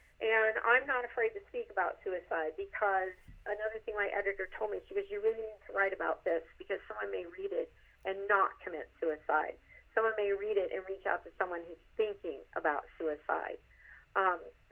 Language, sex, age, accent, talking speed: English, female, 40-59, American, 190 wpm